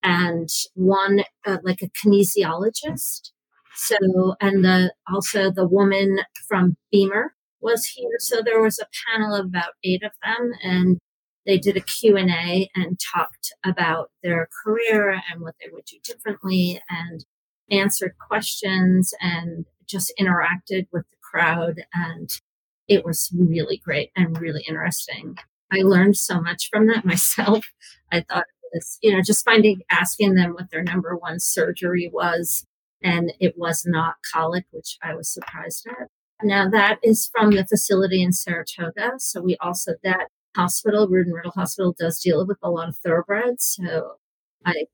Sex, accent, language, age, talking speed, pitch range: female, American, English, 40-59, 155 wpm, 170-205 Hz